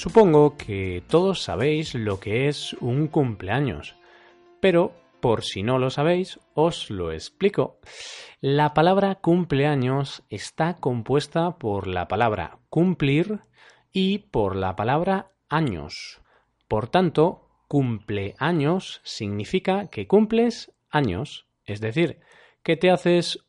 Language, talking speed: Spanish, 110 wpm